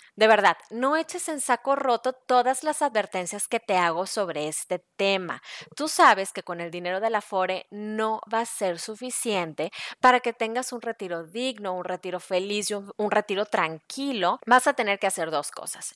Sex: female